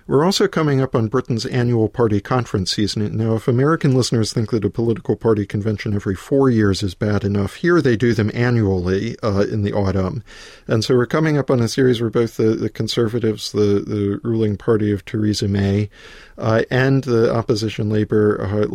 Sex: male